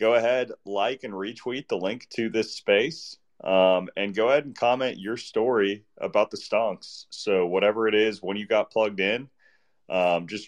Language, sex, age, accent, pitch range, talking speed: English, male, 30-49, American, 90-115 Hz, 185 wpm